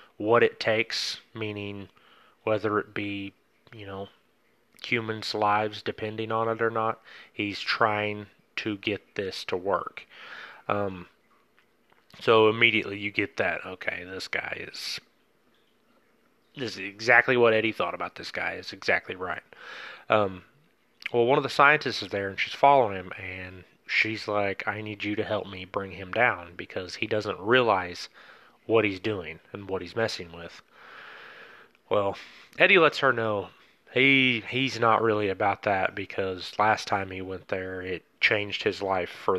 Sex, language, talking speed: male, English, 155 wpm